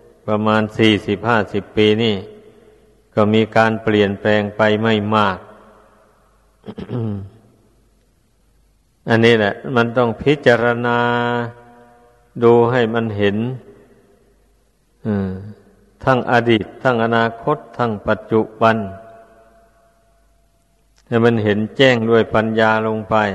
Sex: male